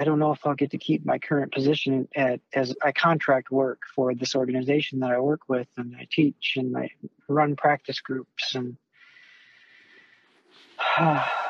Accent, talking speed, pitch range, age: American, 170 wpm, 130-145 Hz, 40-59